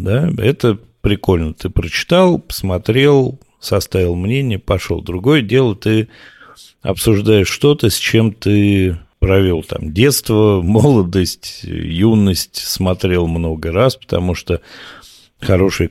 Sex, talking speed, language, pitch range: male, 100 wpm, Russian, 85-110 Hz